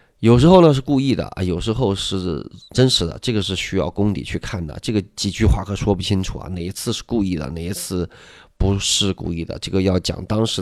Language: Chinese